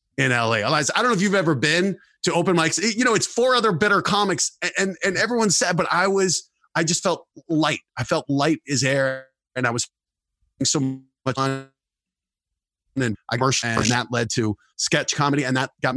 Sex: male